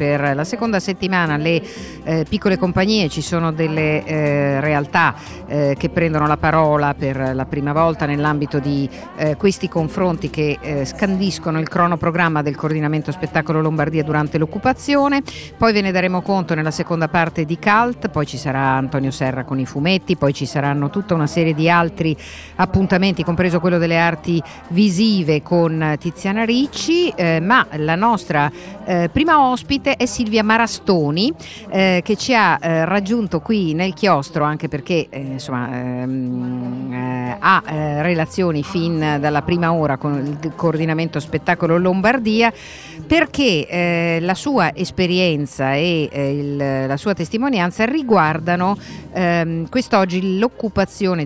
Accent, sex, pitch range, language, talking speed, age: native, female, 150-195 Hz, Italian, 145 wpm, 50-69